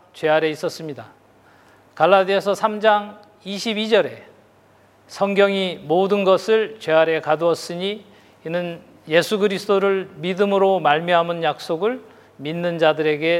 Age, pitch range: 40-59, 160-205 Hz